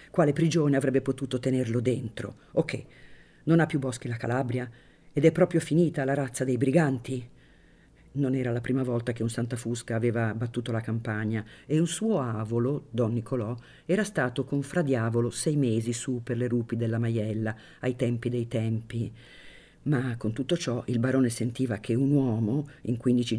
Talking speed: 175 wpm